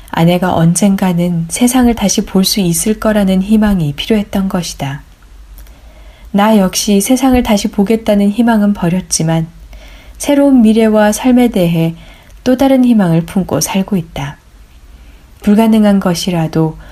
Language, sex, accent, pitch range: Korean, female, native, 160-215 Hz